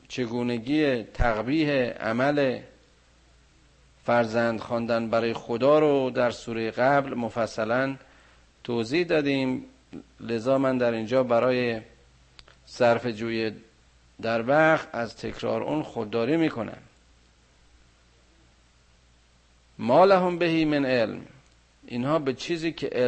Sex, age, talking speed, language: male, 50-69, 95 wpm, Persian